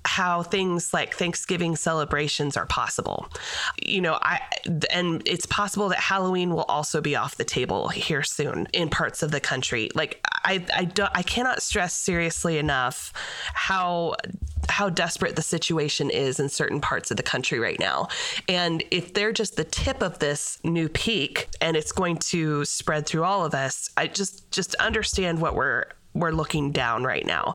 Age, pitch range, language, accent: 20-39, 155-185 Hz, English, American